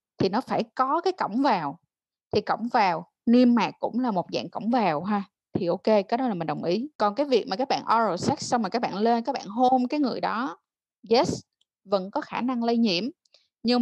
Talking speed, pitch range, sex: 235 wpm, 200-275 Hz, female